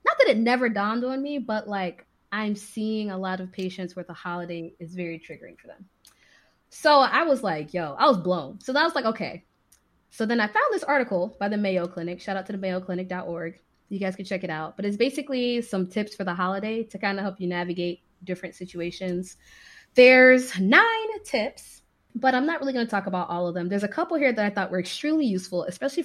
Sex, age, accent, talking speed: female, 20-39, American, 225 wpm